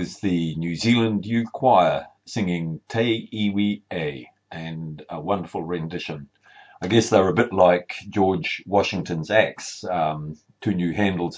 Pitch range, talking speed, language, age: 85-115 Hz, 140 wpm, English, 40-59